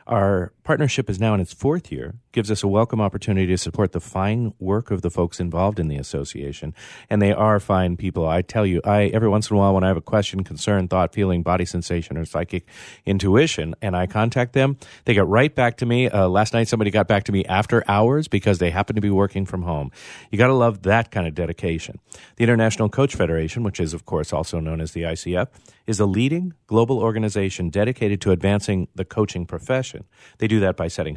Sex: male